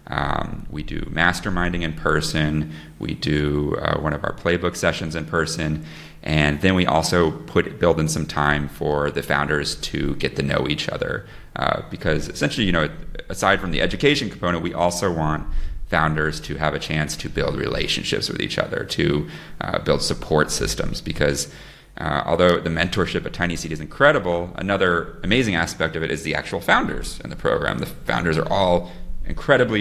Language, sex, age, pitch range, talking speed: English, male, 30-49, 75-85 Hz, 180 wpm